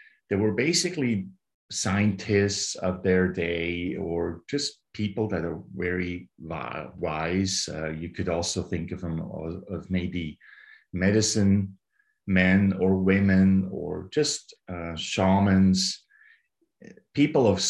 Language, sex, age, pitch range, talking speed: English, male, 50-69, 85-100 Hz, 115 wpm